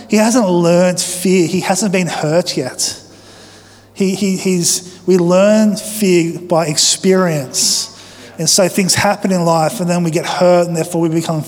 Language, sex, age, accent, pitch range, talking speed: English, male, 20-39, Australian, 165-200 Hz, 155 wpm